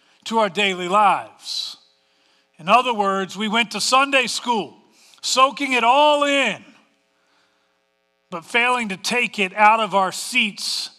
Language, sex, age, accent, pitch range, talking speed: English, male, 40-59, American, 170-230 Hz, 135 wpm